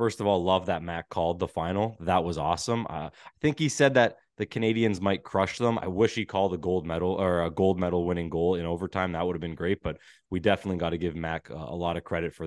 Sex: male